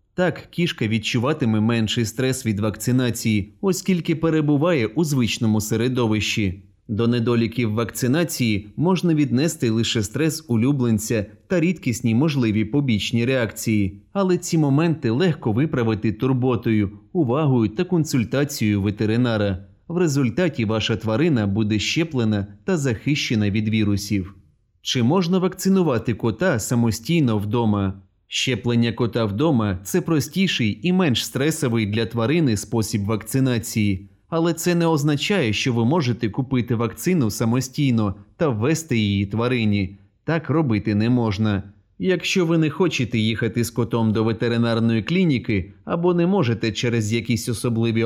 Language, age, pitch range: Ukrainian, 30-49, 110-150 Hz